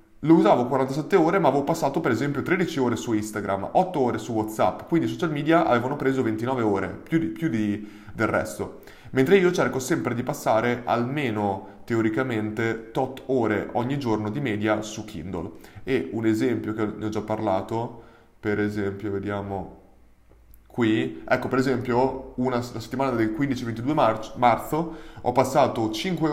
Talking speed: 160 wpm